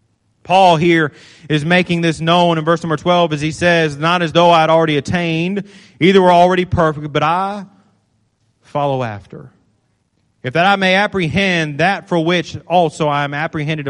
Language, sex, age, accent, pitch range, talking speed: English, male, 30-49, American, 155-225 Hz, 175 wpm